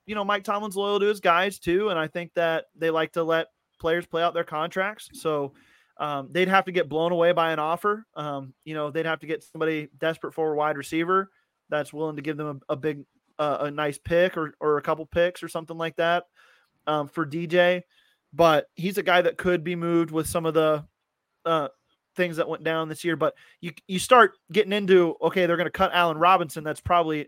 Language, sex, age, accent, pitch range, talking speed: English, male, 20-39, American, 150-175 Hz, 230 wpm